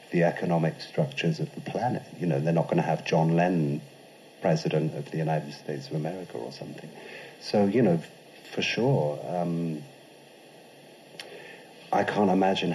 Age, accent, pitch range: 40-59, British, 80-95 Hz